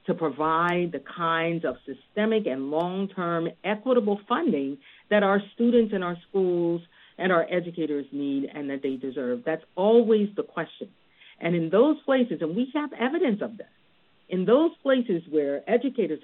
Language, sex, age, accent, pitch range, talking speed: English, female, 50-69, American, 145-215 Hz, 160 wpm